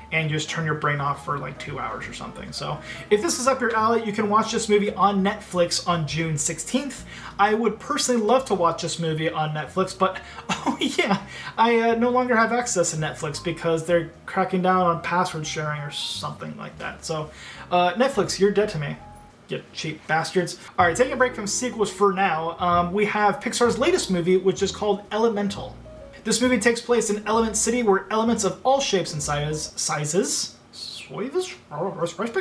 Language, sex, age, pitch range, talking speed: English, male, 30-49, 170-220 Hz, 195 wpm